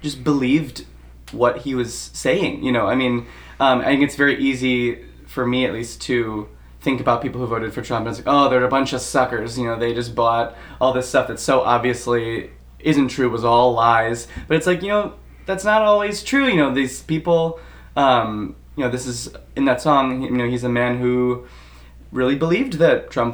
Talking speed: 215 wpm